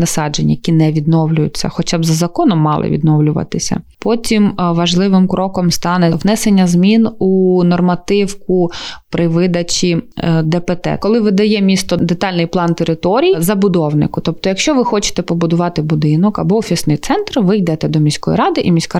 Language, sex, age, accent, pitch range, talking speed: Ukrainian, female, 20-39, native, 160-205 Hz, 140 wpm